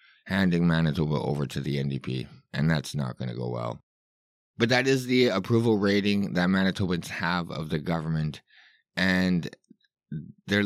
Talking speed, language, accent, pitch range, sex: 150 wpm, English, American, 85-105 Hz, male